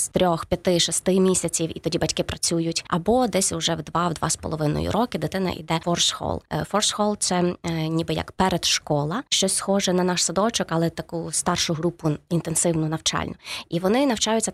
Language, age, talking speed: Ukrainian, 20-39, 170 wpm